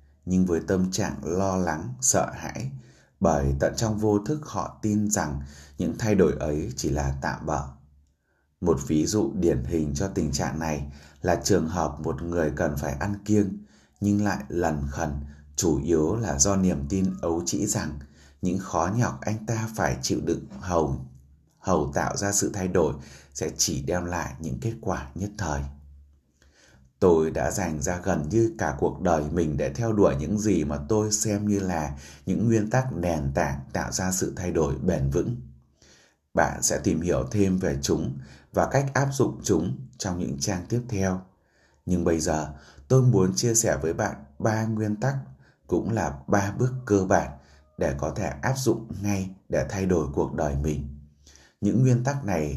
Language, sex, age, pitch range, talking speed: Vietnamese, male, 20-39, 70-100 Hz, 185 wpm